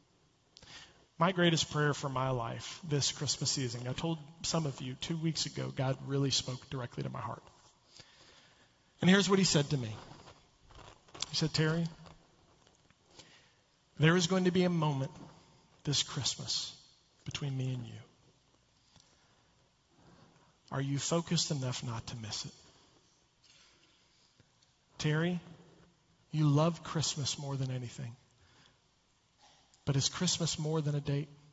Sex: male